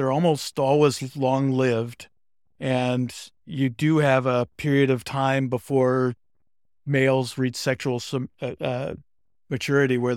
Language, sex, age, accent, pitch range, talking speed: English, male, 50-69, American, 115-140 Hz, 110 wpm